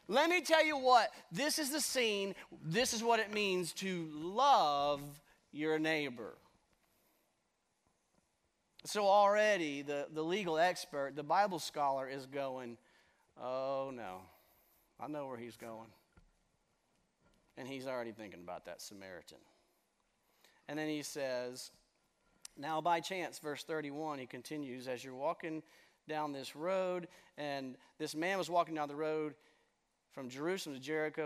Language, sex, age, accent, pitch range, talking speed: English, male, 40-59, American, 130-175 Hz, 140 wpm